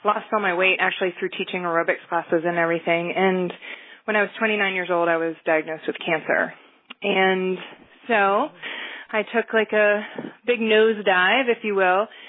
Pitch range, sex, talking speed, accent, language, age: 180-215 Hz, female, 165 wpm, American, English, 20-39